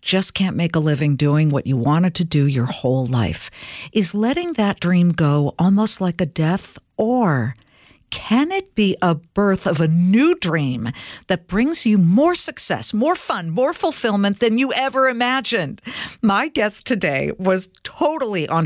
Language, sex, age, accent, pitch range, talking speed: English, female, 50-69, American, 150-200 Hz, 165 wpm